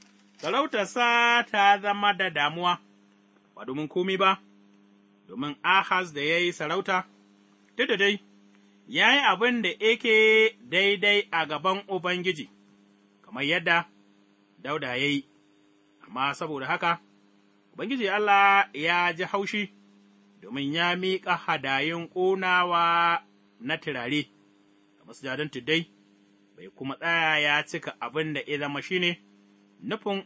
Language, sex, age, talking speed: English, male, 30-49, 85 wpm